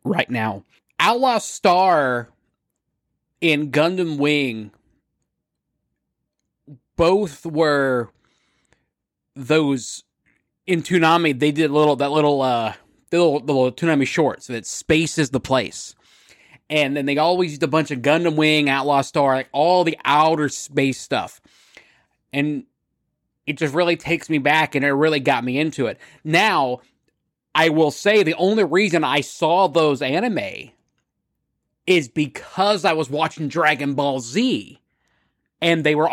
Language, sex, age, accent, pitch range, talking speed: English, male, 20-39, American, 130-165 Hz, 140 wpm